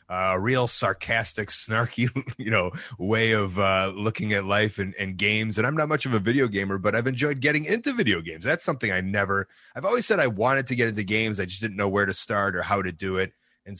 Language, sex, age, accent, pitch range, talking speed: English, male, 30-49, American, 95-125 Hz, 245 wpm